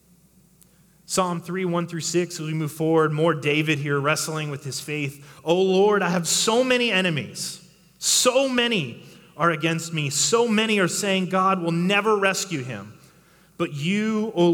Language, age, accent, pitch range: English, 30-49, American, 135-175 Hz